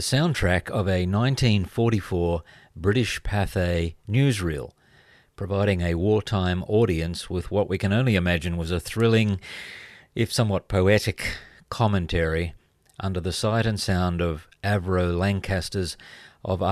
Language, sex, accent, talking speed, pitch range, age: English, male, Australian, 120 wpm, 90-110 Hz, 50-69